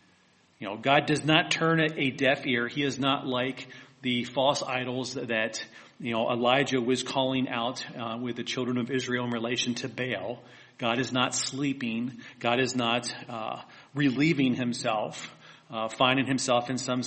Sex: male